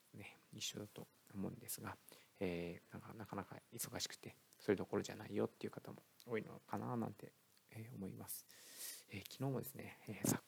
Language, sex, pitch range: Japanese, male, 95-115 Hz